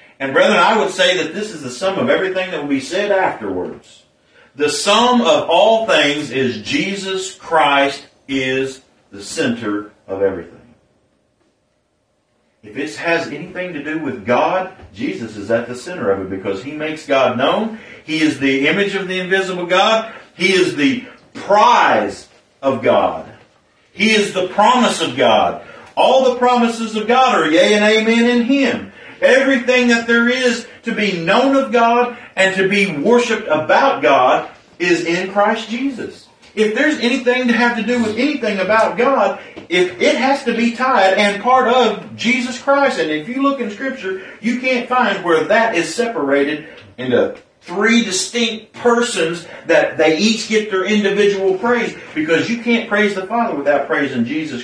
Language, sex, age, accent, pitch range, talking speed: English, male, 50-69, American, 180-240 Hz, 170 wpm